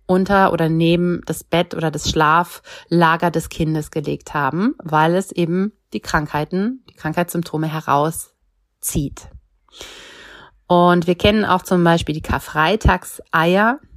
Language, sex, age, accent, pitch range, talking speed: German, female, 30-49, German, 155-185 Hz, 120 wpm